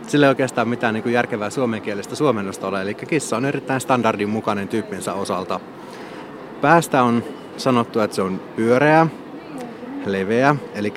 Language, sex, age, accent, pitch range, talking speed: Finnish, male, 30-49, native, 100-130 Hz, 135 wpm